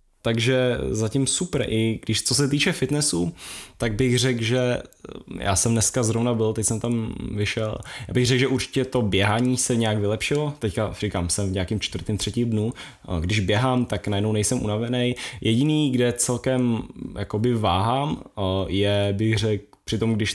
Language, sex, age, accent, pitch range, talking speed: Czech, male, 10-29, native, 105-125 Hz, 170 wpm